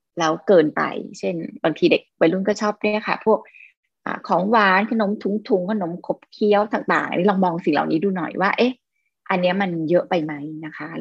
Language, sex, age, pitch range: Thai, female, 20-39, 180-225 Hz